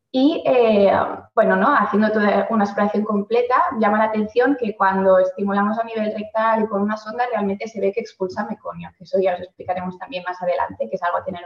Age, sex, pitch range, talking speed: 20-39, female, 190-215 Hz, 215 wpm